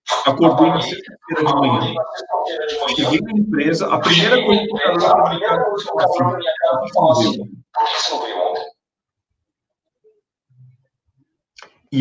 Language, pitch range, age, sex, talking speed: Portuguese, 125-185 Hz, 50-69, male, 110 wpm